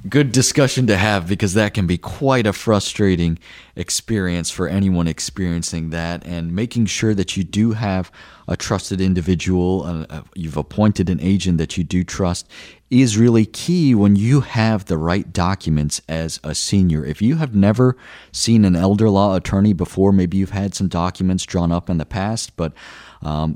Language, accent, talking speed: English, American, 175 wpm